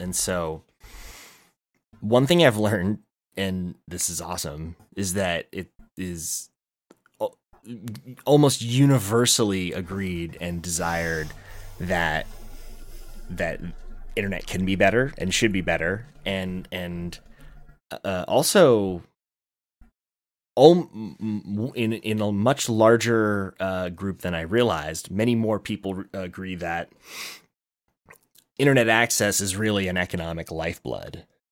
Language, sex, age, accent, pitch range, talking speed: English, male, 30-49, American, 85-110 Hz, 105 wpm